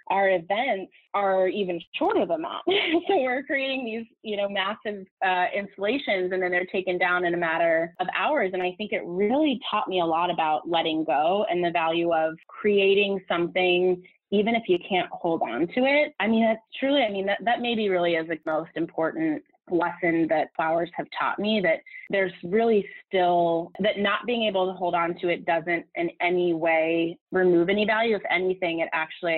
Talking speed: 195 wpm